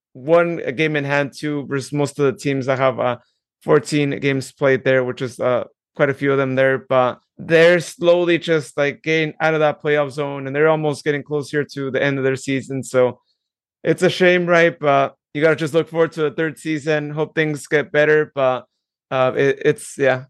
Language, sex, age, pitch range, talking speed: English, male, 30-49, 135-155 Hz, 215 wpm